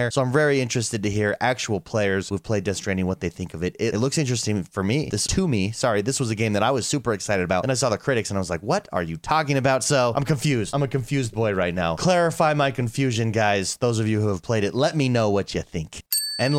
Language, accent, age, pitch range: English, American, 30-49, 105-145 Hz